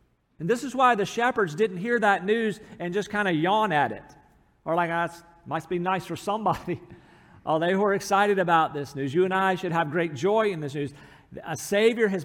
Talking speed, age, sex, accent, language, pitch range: 225 wpm, 50-69, male, American, English, 150-205 Hz